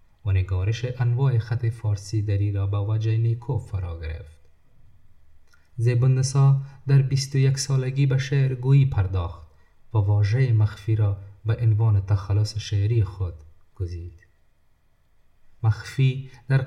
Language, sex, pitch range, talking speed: Persian, male, 95-120 Hz, 120 wpm